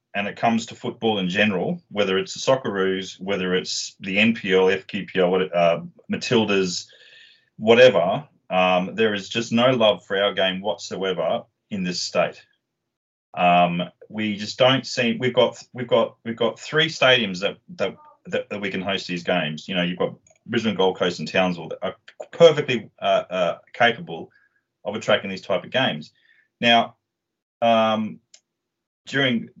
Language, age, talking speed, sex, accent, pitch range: English, 30-49, 155 wpm, male, Australian, 90-125 Hz